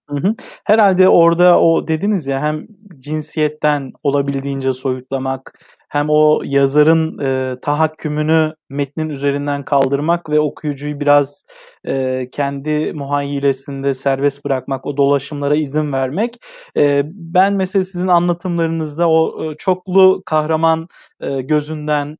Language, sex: Turkish, male